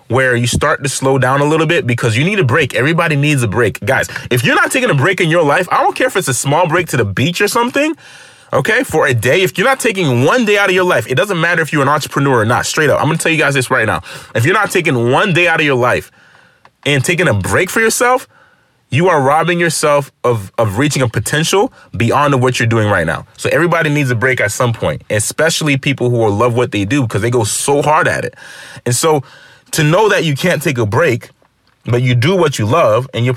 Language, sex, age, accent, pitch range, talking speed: English, male, 30-49, American, 125-160 Hz, 265 wpm